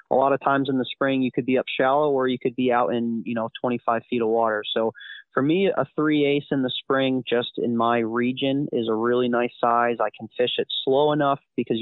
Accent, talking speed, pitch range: American, 250 wpm, 115-135 Hz